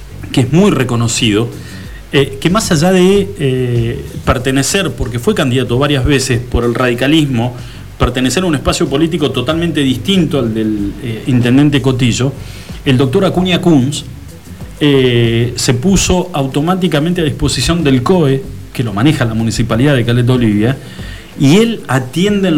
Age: 40-59